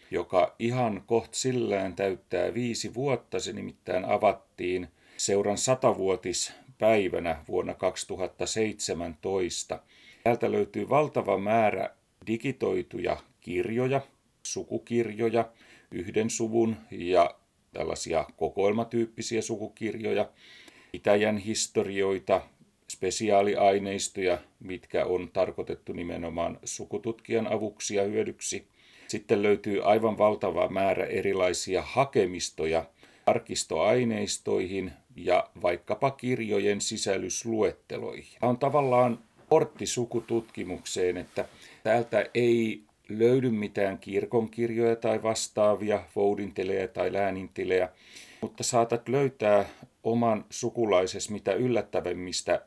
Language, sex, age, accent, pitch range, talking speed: Finnish, male, 40-59, native, 100-120 Hz, 80 wpm